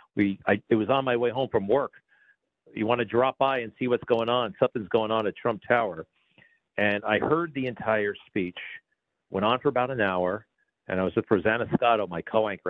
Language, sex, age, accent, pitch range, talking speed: English, male, 50-69, American, 95-120 Hz, 215 wpm